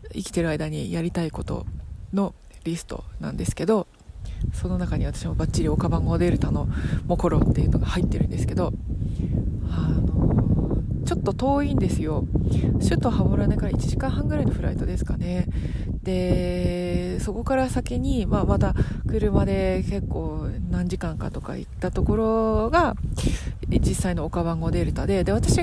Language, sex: Japanese, female